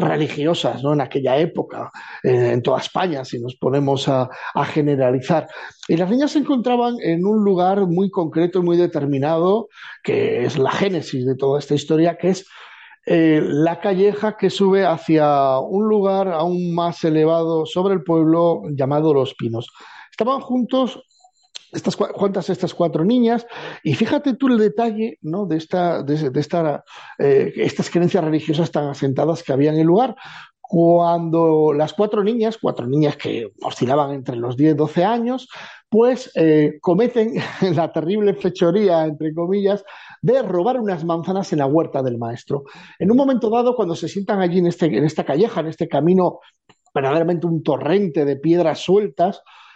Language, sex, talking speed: Spanish, male, 165 wpm